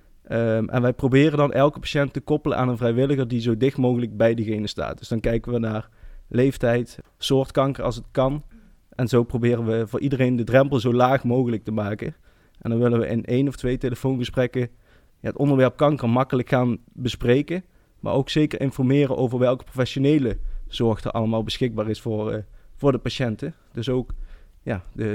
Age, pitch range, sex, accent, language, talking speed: 20-39, 115-135 Hz, male, Dutch, Dutch, 190 wpm